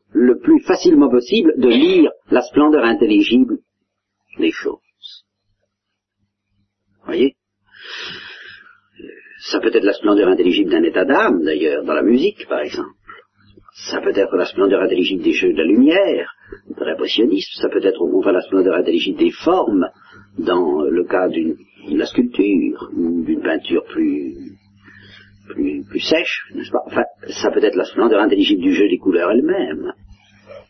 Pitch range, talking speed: 295-380 Hz, 150 wpm